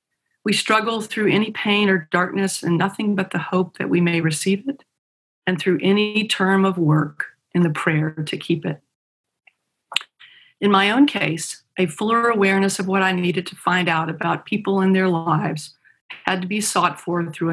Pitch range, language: 165-200 Hz, English